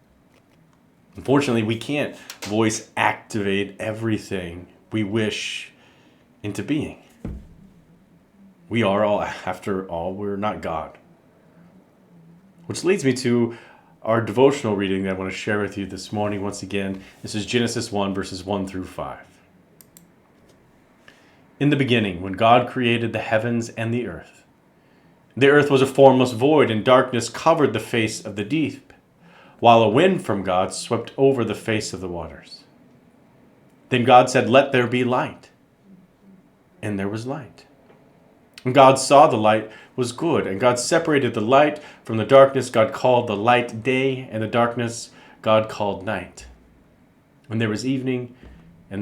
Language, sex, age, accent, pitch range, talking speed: English, male, 40-59, American, 100-130 Hz, 150 wpm